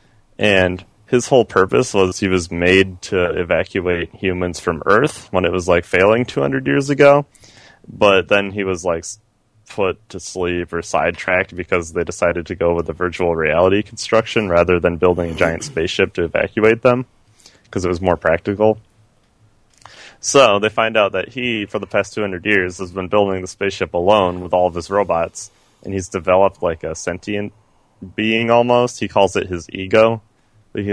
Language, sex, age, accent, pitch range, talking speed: English, male, 20-39, American, 90-105 Hz, 175 wpm